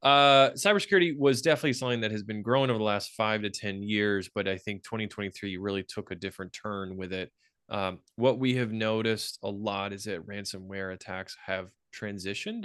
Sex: male